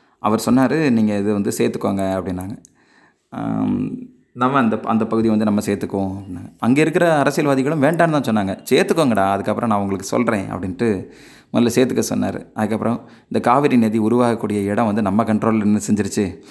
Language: Tamil